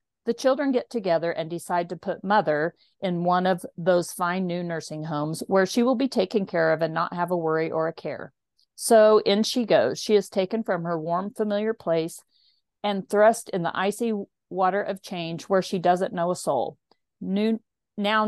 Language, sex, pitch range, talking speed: English, female, 170-215 Hz, 195 wpm